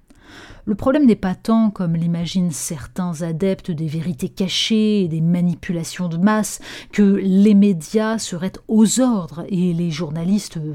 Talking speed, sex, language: 145 wpm, female, French